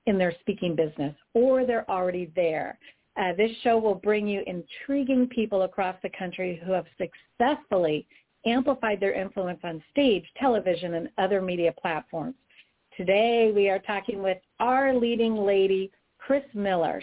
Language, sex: English, female